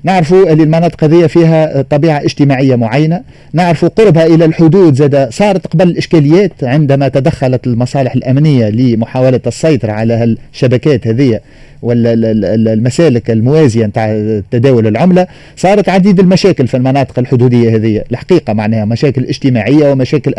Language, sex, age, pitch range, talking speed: Arabic, male, 40-59, 125-180 Hz, 115 wpm